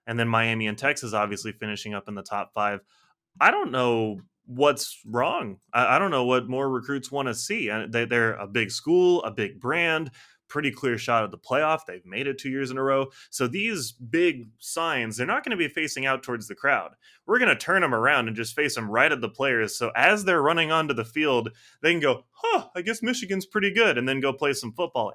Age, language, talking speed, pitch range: 20-39, English, 230 wpm, 110-150 Hz